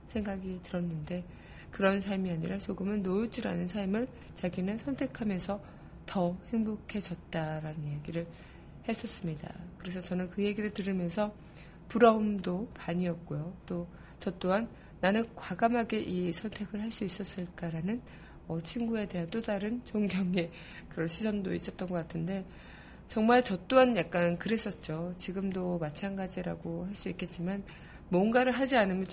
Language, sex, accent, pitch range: Korean, female, native, 170-210 Hz